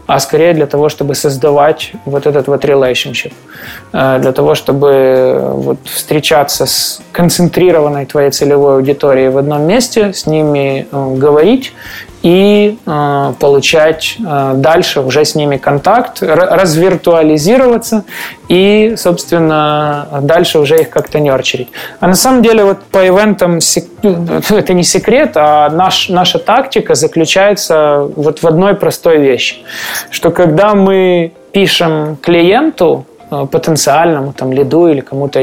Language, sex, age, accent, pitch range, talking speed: Russian, male, 20-39, native, 150-195 Hz, 110 wpm